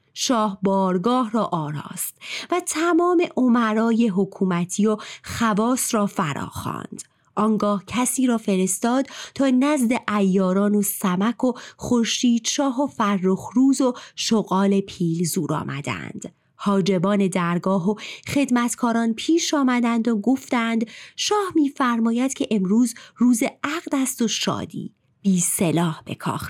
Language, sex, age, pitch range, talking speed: Persian, female, 30-49, 190-270 Hz, 120 wpm